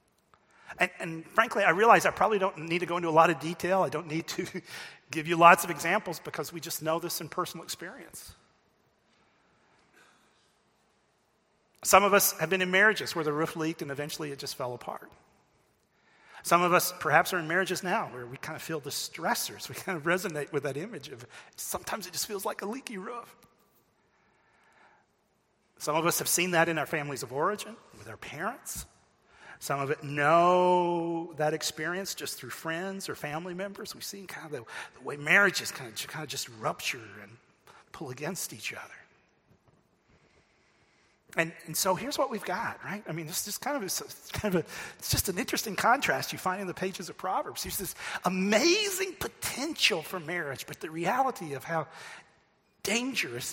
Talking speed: 190 wpm